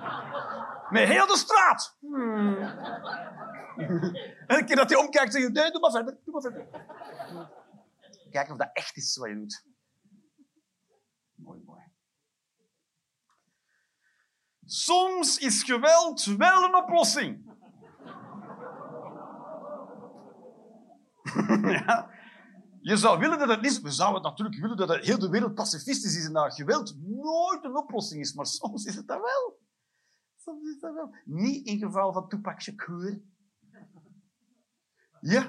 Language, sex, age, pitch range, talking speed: Dutch, male, 50-69, 200-270 Hz, 120 wpm